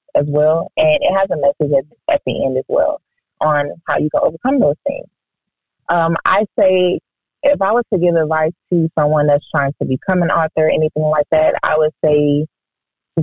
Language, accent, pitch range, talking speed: English, American, 145-175 Hz, 200 wpm